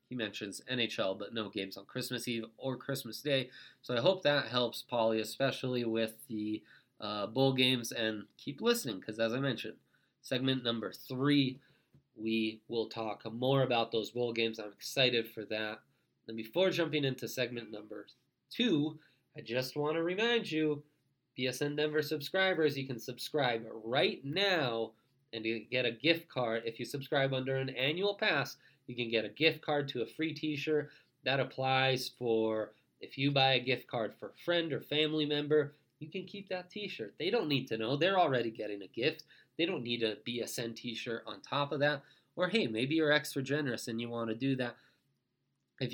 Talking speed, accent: 185 wpm, American